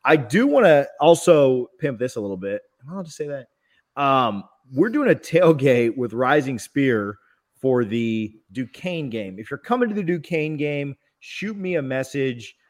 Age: 30-49